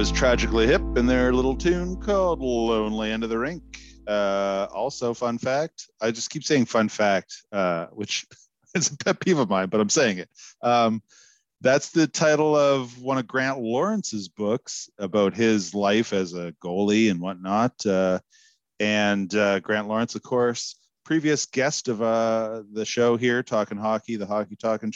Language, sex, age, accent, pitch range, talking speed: English, male, 40-59, American, 95-120 Hz, 175 wpm